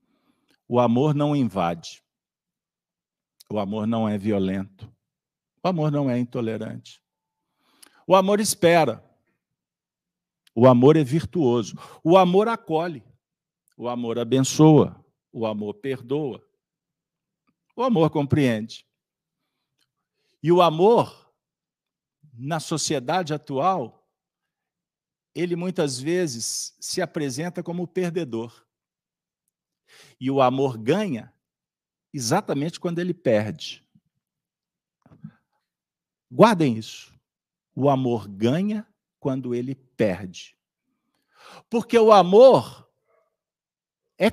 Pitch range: 120-190 Hz